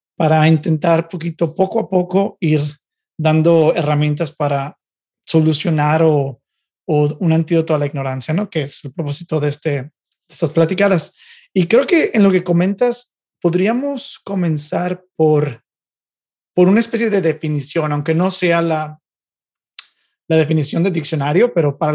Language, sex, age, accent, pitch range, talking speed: Spanish, male, 30-49, Mexican, 150-180 Hz, 145 wpm